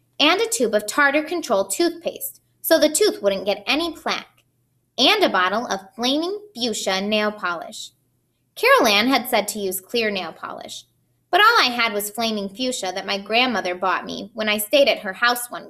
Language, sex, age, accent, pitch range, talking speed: English, female, 20-39, American, 195-290 Hz, 190 wpm